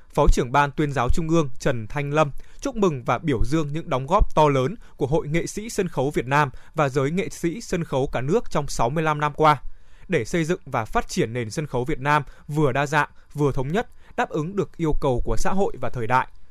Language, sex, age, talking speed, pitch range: Vietnamese, male, 20-39, 245 wpm, 135-175 Hz